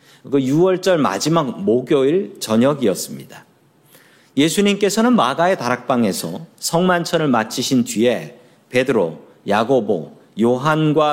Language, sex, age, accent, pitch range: Korean, male, 40-59, native, 120-170 Hz